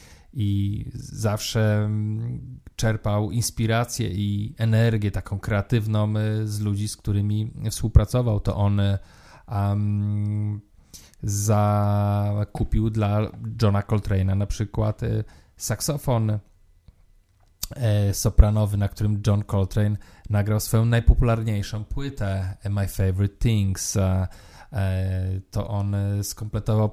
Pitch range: 100-110 Hz